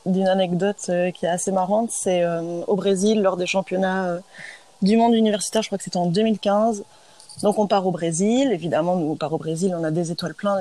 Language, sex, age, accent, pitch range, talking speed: French, female, 30-49, French, 175-210 Hz, 220 wpm